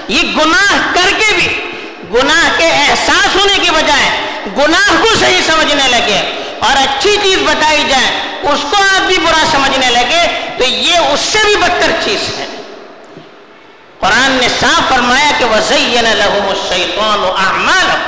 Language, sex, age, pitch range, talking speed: Urdu, female, 50-69, 265-375 Hz, 140 wpm